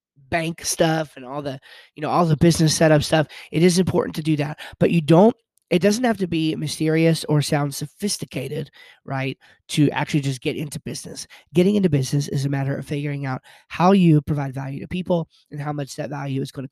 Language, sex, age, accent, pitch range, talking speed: English, male, 20-39, American, 140-170 Hz, 215 wpm